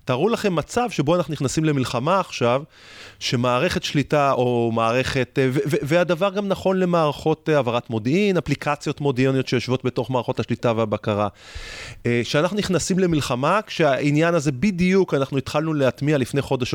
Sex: male